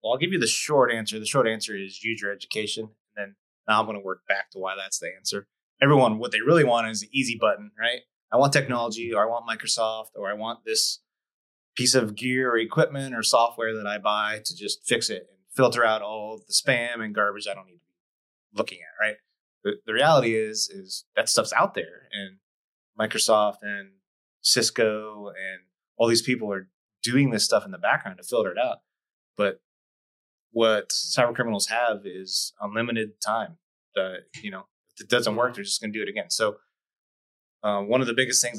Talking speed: 210 wpm